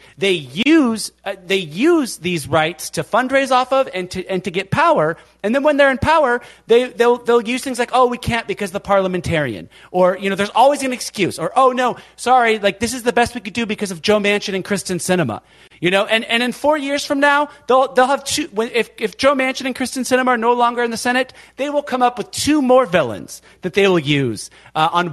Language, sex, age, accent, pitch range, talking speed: English, male, 30-49, American, 170-245 Hz, 245 wpm